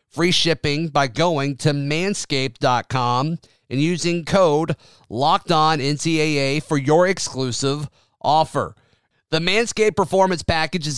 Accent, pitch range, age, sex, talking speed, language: American, 140-170 Hz, 30-49, male, 105 wpm, English